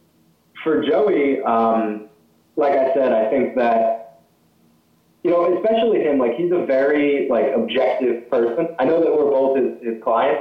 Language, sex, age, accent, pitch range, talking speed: English, male, 20-39, American, 110-135 Hz, 160 wpm